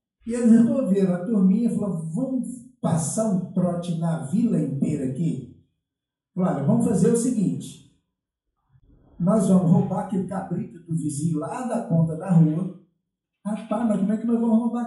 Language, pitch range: Portuguese, 190-240 Hz